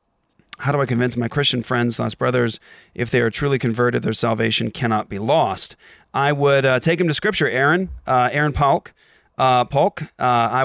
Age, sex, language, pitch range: 30-49, male, English, 120-145 Hz